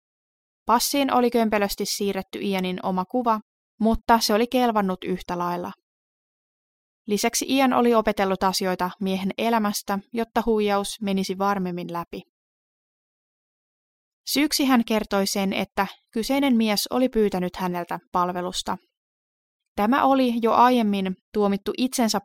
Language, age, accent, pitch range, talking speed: Finnish, 20-39, native, 185-230 Hz, 115 wpm